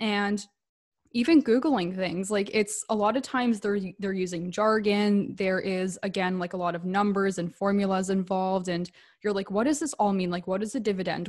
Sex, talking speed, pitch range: female, 200 wpm, 180-215 Hz